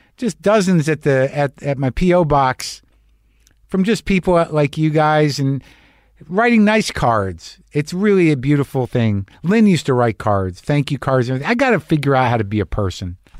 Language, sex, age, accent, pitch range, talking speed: English, male, 50-69, American, 110-155 Hz, 190 wpm